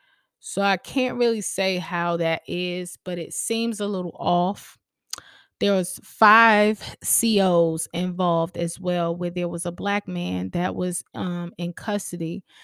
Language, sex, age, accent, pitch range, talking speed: English, female, 20-39, American, 170-190 Hz, 150 wpm